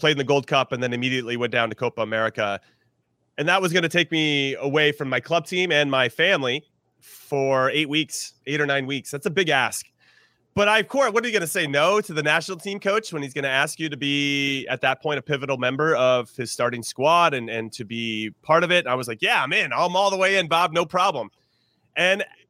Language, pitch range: English, 130-180 Hz